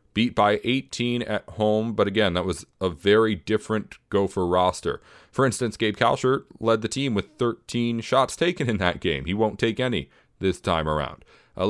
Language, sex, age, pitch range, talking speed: English, male, 30-49, 90-115 Hz, 185 wpm